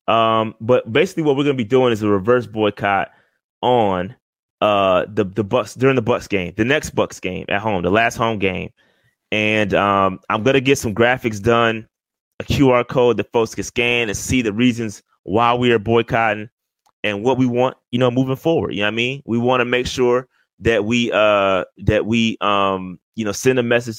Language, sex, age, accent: English, male, 20-39, American